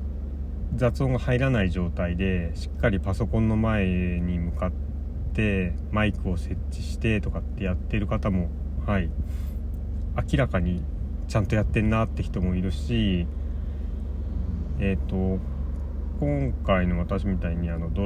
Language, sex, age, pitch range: Japanese, male, 30-49, 80-95 Hz